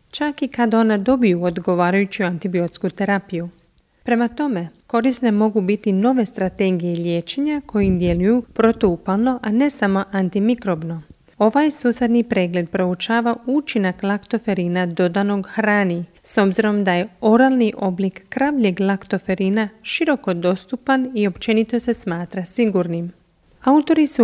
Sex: female